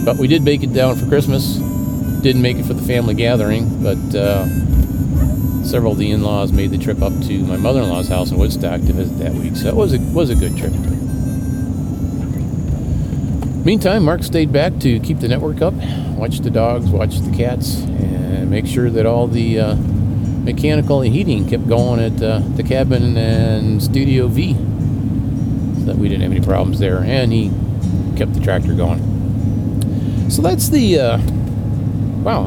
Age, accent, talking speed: 40-59, American, 175 wpm